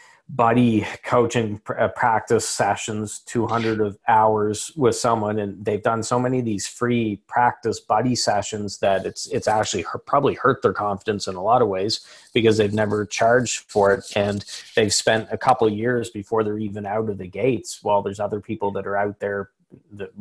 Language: English